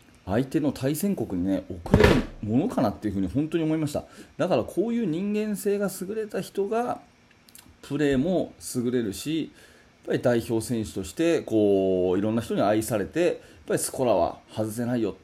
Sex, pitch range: male, 105-135 Hz